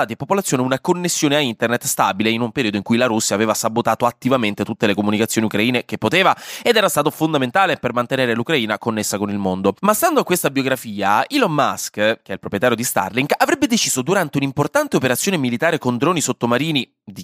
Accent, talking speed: native, 200 wpm